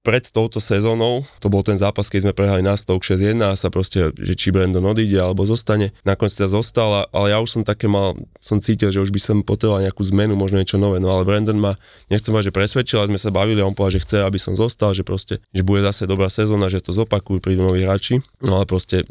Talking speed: 245 wpm